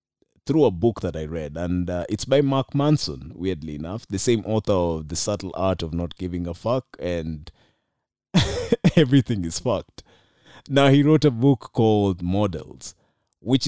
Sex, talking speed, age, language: male, 165 wpm, 30-49, Swahili